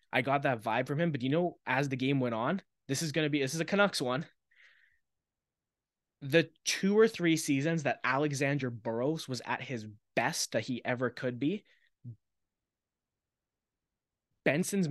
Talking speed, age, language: 170 wpm, 20-39, English